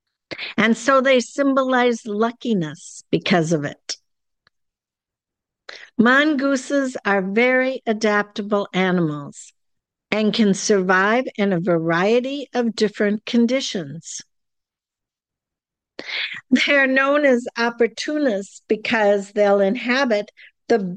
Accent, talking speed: American, 85 wpm